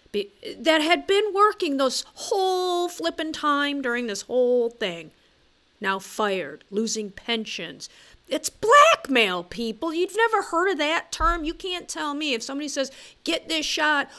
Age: 40-59